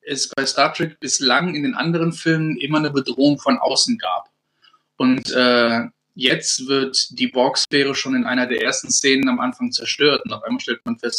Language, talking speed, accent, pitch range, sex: German, 195 wpm, German, 120-155 Hz, male